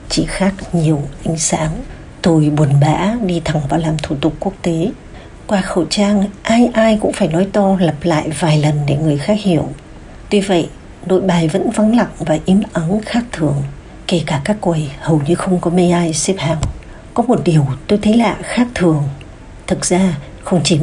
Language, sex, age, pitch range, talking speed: English, female, 60-79, 150-185 Hz, 200 wpm